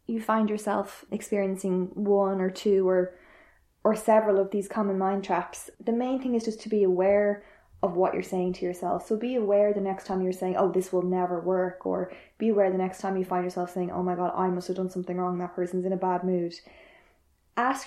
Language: English